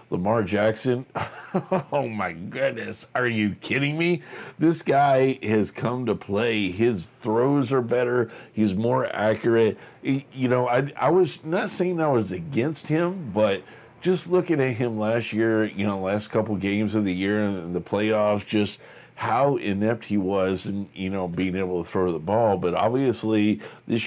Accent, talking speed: American, 170 wpm